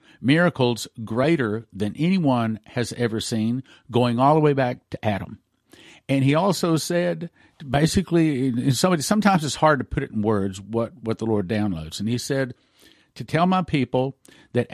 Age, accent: 50-69, American